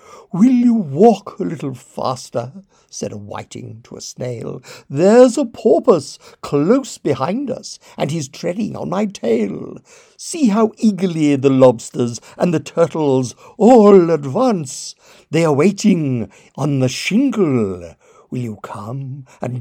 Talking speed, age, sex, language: 135 wpm, 60-79, male, English